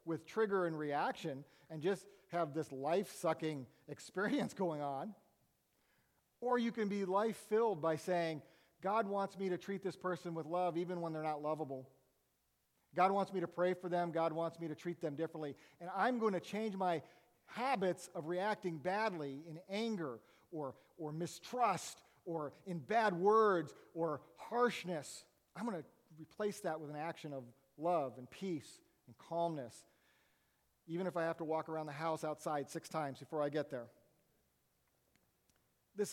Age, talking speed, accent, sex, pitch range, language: 40-59, 170 wpm, American, male, 160-210 Hz, English